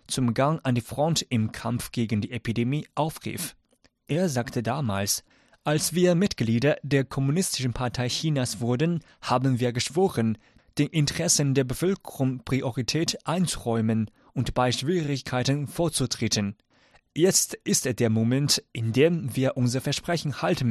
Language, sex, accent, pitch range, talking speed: German, male, German, 120-150 Hz, 135 wpm